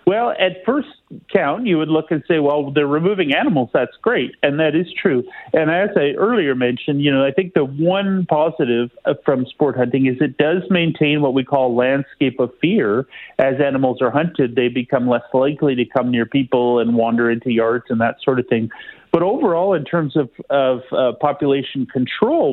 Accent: American